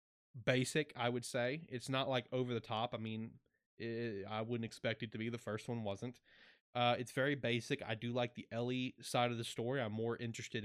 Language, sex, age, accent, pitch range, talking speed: English, male, 20-39, American, 110-130 Hz, 215 wpm